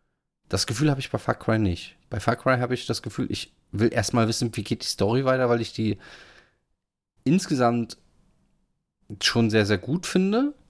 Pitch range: 110-130 Hz